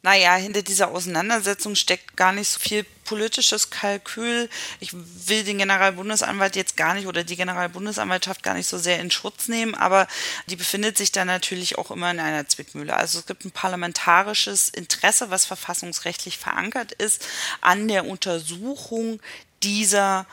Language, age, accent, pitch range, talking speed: German, 30-49, German, 180-215 Hz, 155 wpm